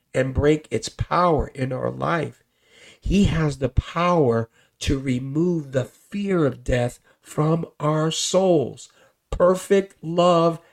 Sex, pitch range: male, 110-155 Hz